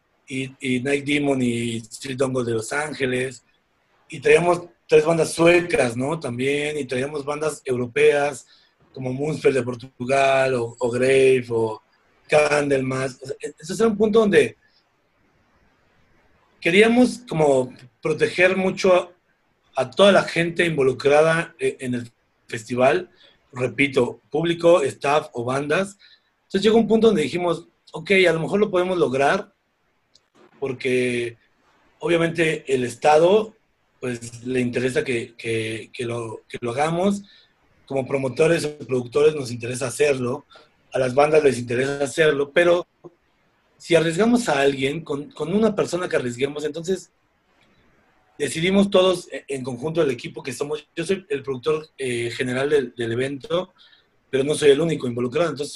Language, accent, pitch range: Spanish, Mexican, 130-170 Hz